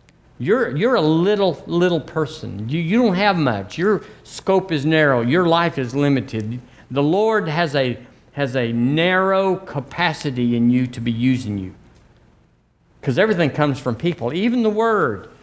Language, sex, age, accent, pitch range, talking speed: English, male, 50-69, American, 130-185 Hz, 160 wpm